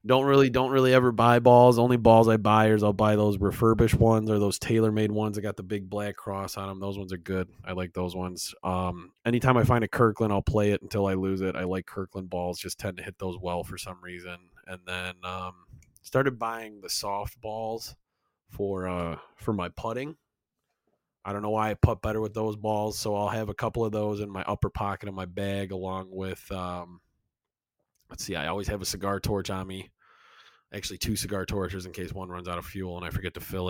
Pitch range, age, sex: 90-110 Hz, 30-49, male